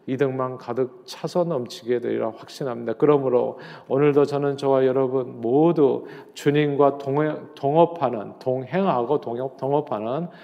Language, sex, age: Korean, male, 40-59